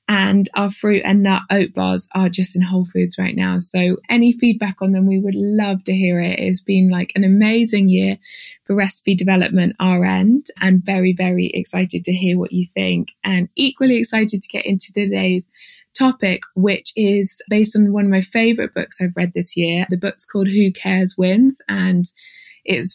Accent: British